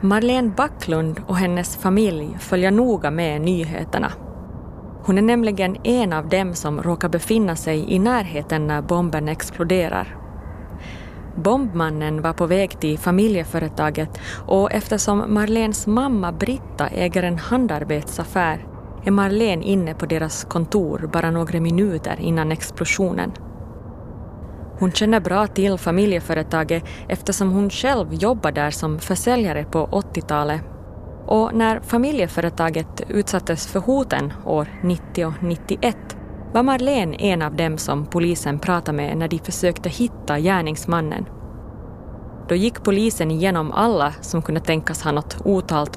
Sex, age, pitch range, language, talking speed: female, 30-49, 155-200 Hz, Swedish, 130 wpm